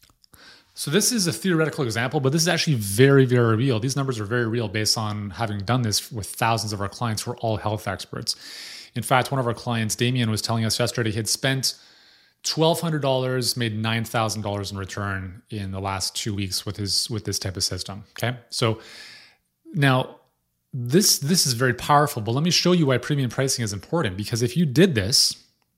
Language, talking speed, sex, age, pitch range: English, 205 wpm, male, 30-49, 110-140 Hz